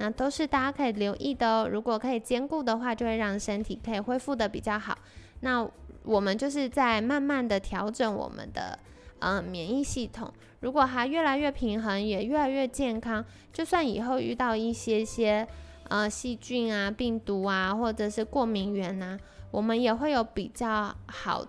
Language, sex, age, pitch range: Chinese, female, 20-39, 205-265 Hz